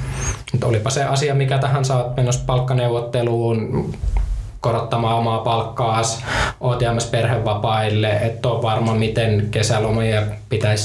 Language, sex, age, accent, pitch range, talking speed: Finnish, male, 20-39, native, 105-125 Hz, 110 wpm